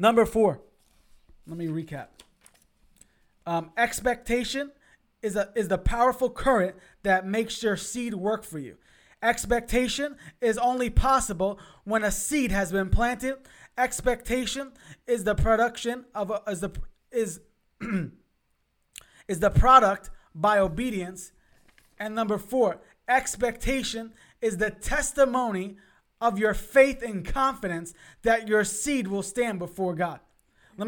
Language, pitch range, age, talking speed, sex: English, 195-250 Hz, 20-39, 125 wpm, male